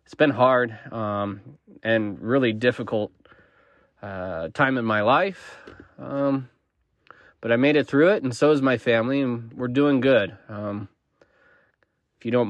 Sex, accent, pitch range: male, American, 105-130 Hz